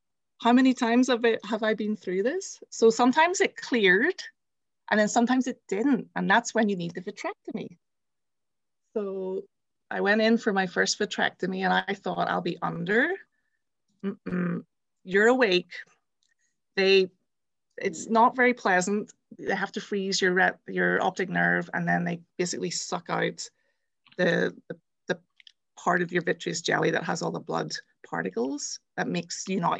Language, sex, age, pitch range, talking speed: English, female, 30-49, 180-235 Hz, 160 wpm